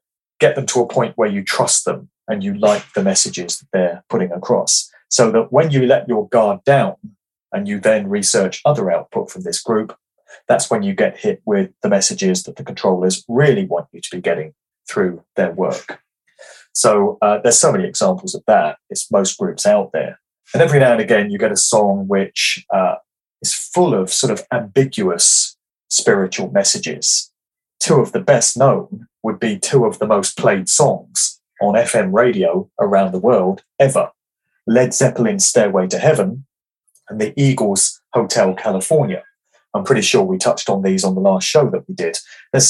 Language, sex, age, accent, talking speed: English, male, 30-49, British, 185 wpm